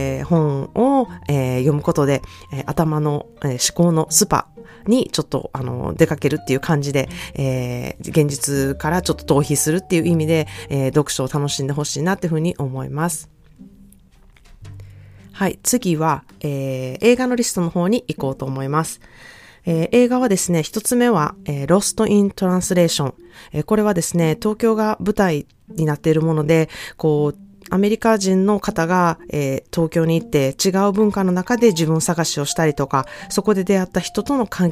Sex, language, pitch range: female, Japanese, 140-180 Hz